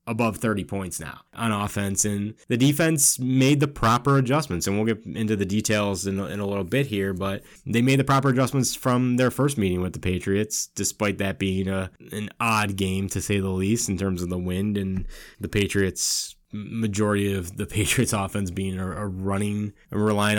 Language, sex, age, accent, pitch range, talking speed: English, male, 20-39, American, 100-130 Hz, 195 wpm